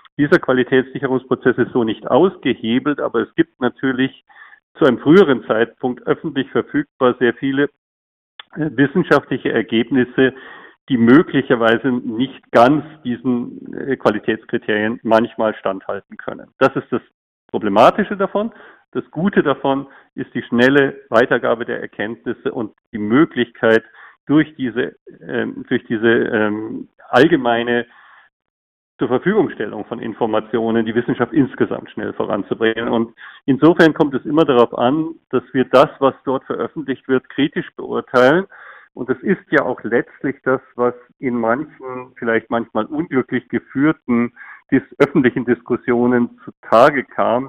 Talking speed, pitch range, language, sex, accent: 120 wpm, 115-145 Hz, German, male, German